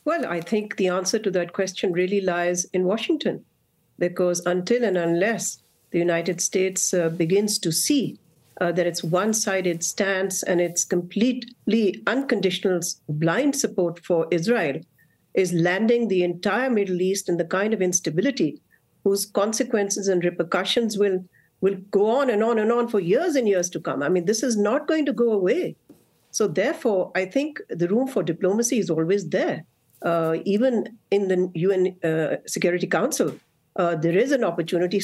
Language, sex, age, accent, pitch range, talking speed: English, female, 50-69, Indian, 175-215 Hz, 170 wpm